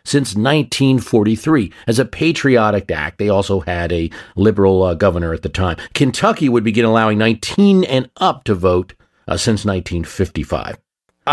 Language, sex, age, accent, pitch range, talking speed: English, male, 40-59, American, 95-130 Hz, 150 wpm